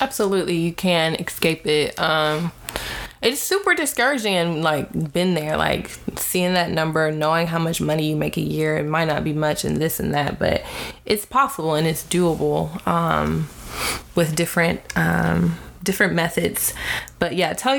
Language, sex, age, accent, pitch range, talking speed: English, female, 20-39, American, 165-195 Hz, 165 wpm